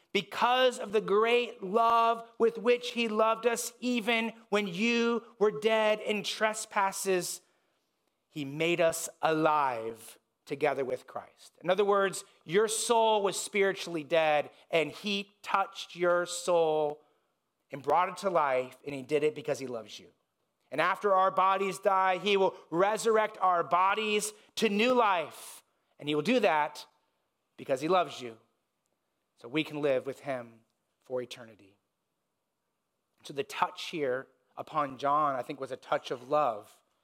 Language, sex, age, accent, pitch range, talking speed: English, male, 30-49, American, 160-215 Hz, 150 wpm